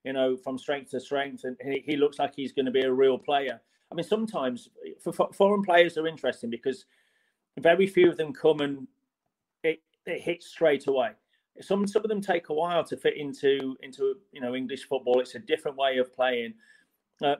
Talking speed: 210 wpm